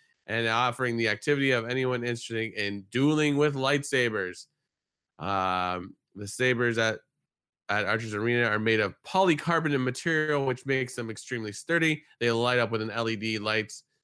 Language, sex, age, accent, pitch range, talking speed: English, male, 20-39, American, 110-150 Hz, 150 wpm